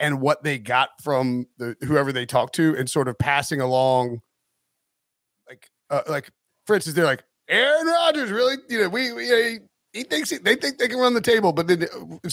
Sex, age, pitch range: male, 30-49, 125-165 Hz